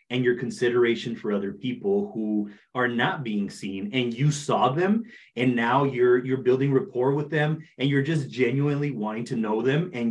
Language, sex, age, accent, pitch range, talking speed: English, male, 30-49, American, 115-150 Hz, 190 wpm